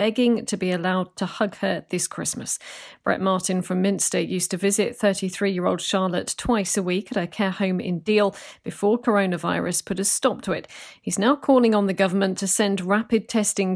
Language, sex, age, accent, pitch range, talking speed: English, female, 40-59, British, 190-225 Hz, 190 wpm